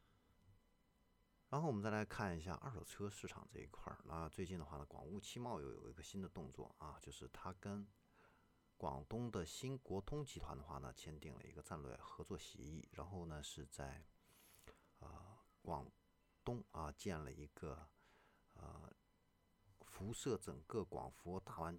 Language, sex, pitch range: Chinese, male, 75-95 Hz